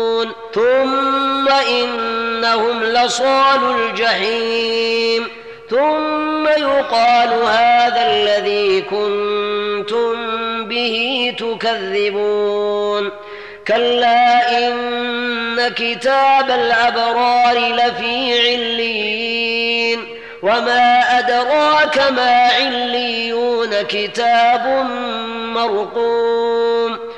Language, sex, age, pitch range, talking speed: Arabic, female, 30-49, 210-245 Hz, 50 wpm